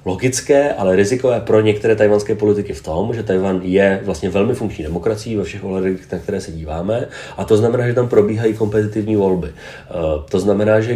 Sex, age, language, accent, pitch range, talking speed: male, 30-49, Czech, native, 90-105 Hz, 185 wpm